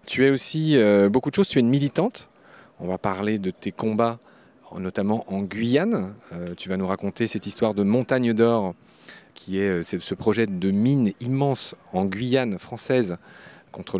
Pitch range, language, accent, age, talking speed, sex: 95-125 Hz, French, French, 40-59, 165 wpm, male